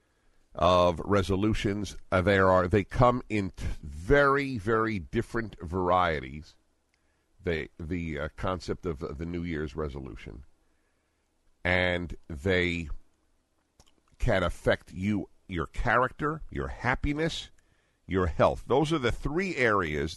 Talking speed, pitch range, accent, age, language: 120 wpm, 85-125 Hz, American, 50-69, English